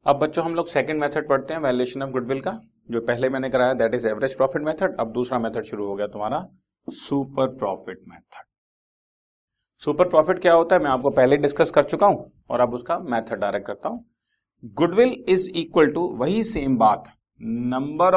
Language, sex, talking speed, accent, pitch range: Hindi, male, 160 wpm, native, 120-165 Hz